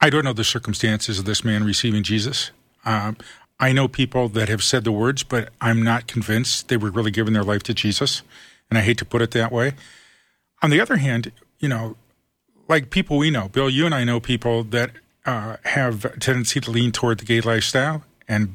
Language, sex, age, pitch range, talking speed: English, male, 40-59, 115-140 Hz, 215 wpm